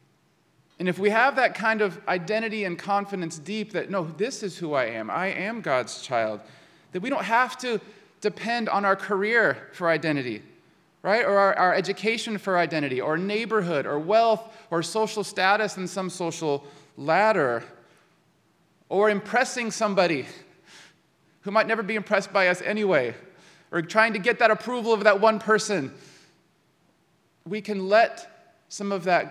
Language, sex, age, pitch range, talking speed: English, male, 30-49, 150-205 Hz, 160 wpm